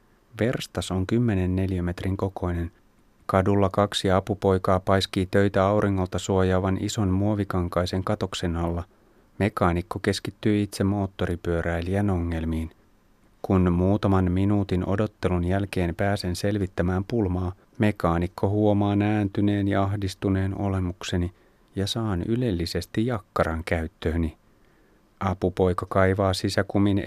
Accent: native